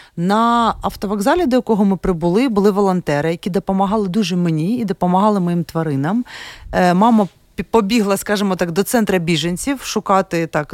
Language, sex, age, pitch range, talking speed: Ukrainian, female, 30-49, 180-225 Hz, 140 wpm